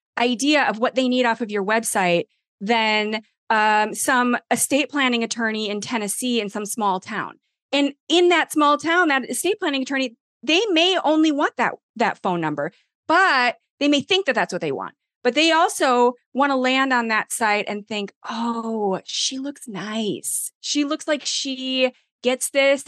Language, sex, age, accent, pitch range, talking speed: English, female, 30-49, American, 210-275 Hz, 180 wpm